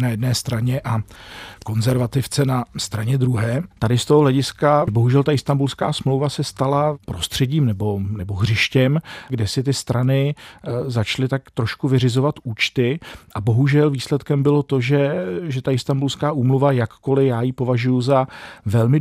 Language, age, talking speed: Czech, 40-59, 150 wpm